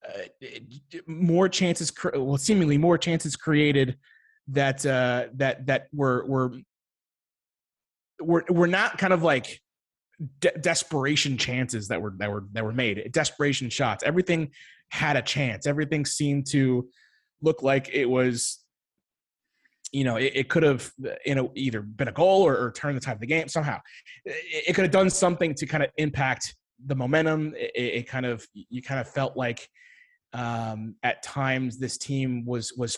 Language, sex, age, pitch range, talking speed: English, male, 20-39, 125-155 Hz, 165 wpm